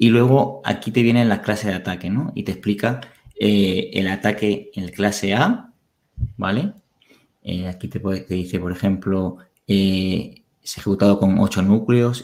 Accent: Spanish